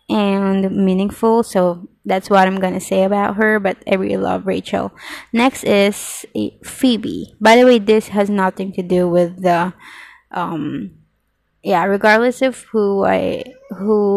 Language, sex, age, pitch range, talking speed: English, female, 20-39, 185-215 Hz, 150 wpm